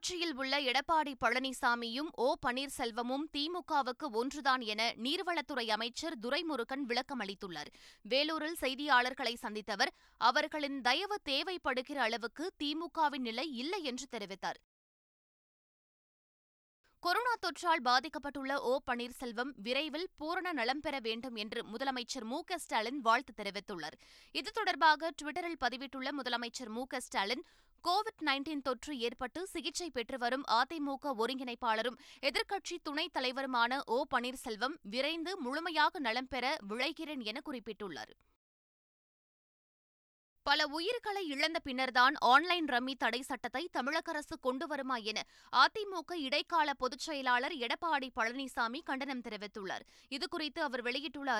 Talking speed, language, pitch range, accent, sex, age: 105 wpm, Tamil, 245-315 Hz, native, female, 20-39